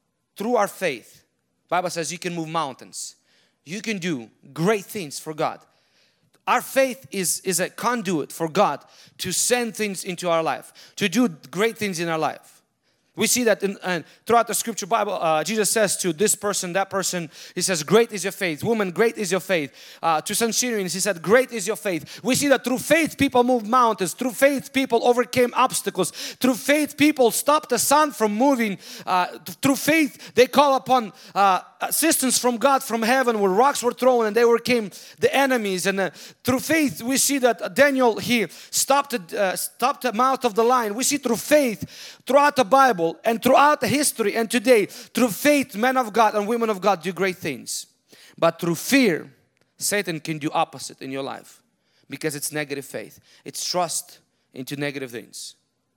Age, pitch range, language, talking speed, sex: 30-49, 180-250 Hz, English, 190 wpm, male